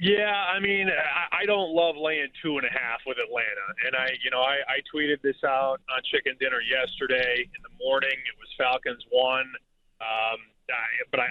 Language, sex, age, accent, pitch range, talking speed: English, male, 30-49, American, 140-180 Hz, 190 wpm